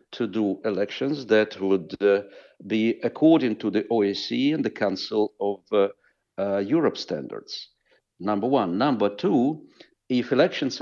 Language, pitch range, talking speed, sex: Danish, 105-135 Hz, 140 wpm, male